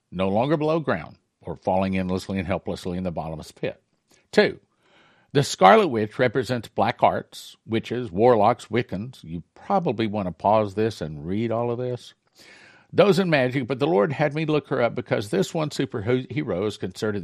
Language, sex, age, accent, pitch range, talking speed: English, male, 60-79, American, 110-155 Hz, 175 wpm